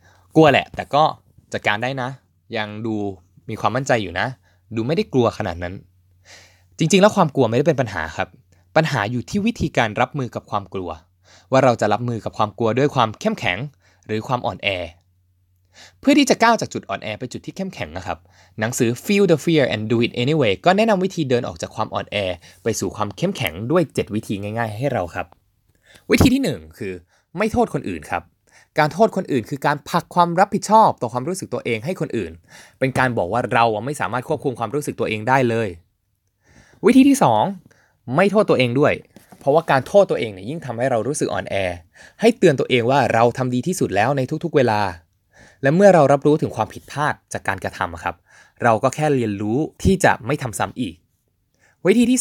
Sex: male